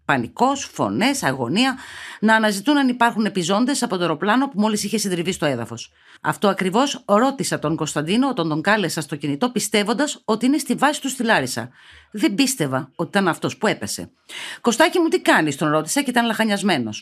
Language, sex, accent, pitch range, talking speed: Greek, female, native, 170-260 Hz, 175 wpm